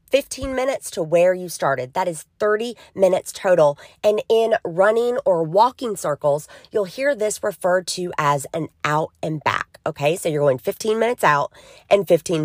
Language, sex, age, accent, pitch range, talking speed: English, female, 30-49, American, 175-260 Hz, 175 wpm